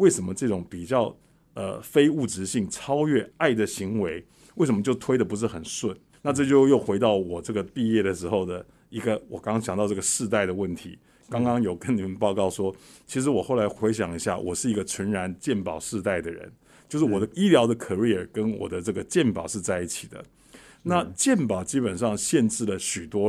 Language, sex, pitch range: Chinese, male, 95-130 Hz